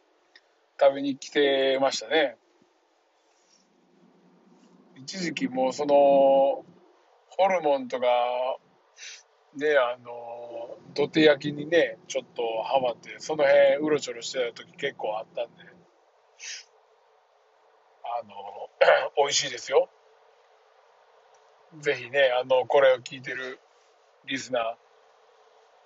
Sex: male